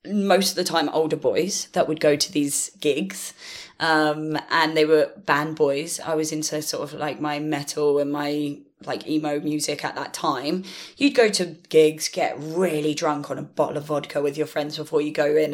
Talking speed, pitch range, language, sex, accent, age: 205 wpm, 155-195 Hz, English, female, British, 10-29